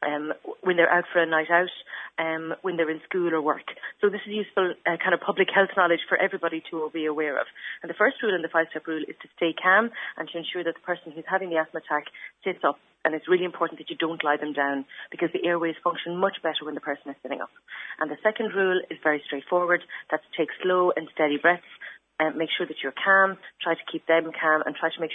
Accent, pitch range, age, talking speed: Irish, 160-185 Hz, 30-49, 255 wpm